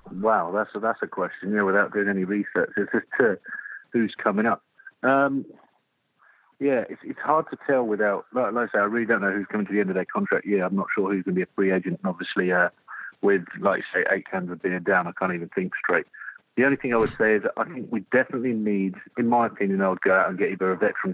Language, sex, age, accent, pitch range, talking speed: English, male, 40-59, British, 95-115 Hz, 265 wpm